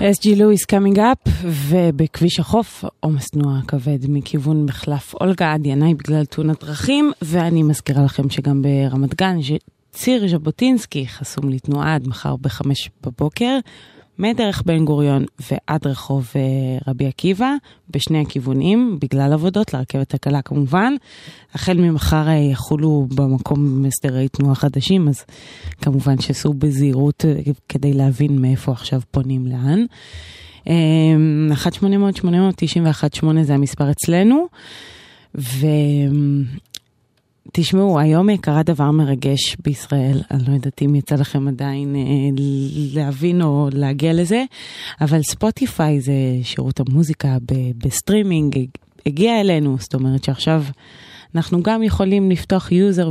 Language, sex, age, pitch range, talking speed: Hebrew, female, 20-39, 135-170 Hz, 115 wpm